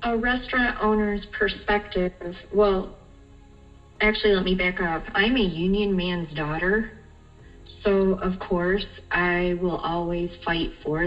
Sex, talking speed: female, 125 wpm